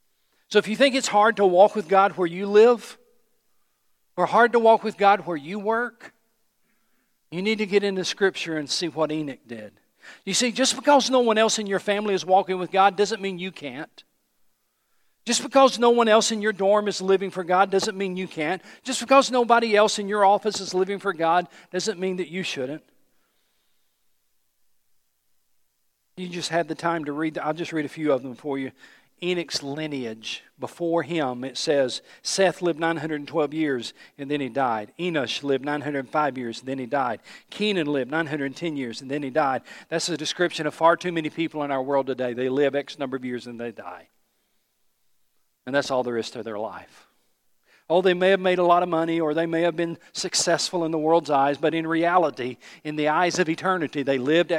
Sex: male